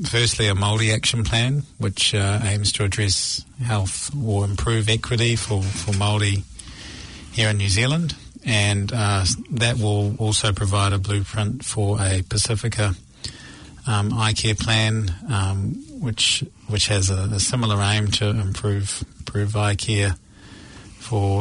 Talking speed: 140 wpm